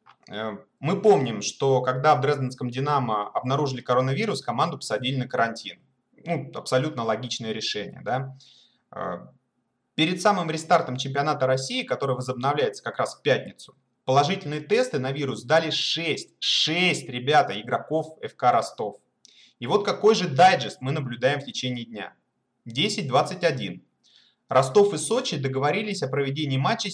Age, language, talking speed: 30-49, Russian, 130 wpm